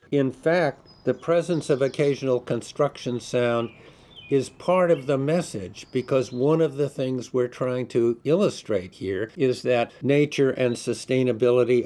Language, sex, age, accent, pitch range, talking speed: English, male, 60-79, American, 105-135 Hz, 140 wpm